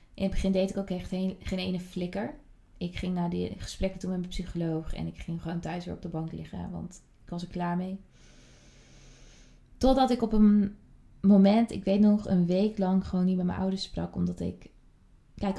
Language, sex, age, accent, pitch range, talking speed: Dutch, female, 20-39, Dutch, 175-200 Hz, 210 wpm